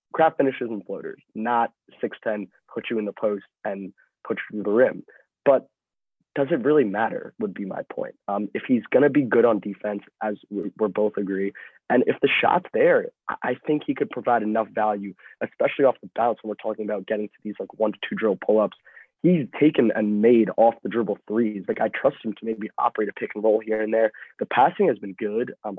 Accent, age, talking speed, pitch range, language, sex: American, 20-39, 225 wpm, 105-125 Hz, English, male